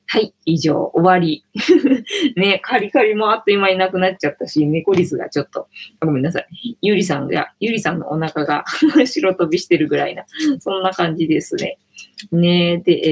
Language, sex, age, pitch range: Japanese, female, 20-39, 165-240 Hz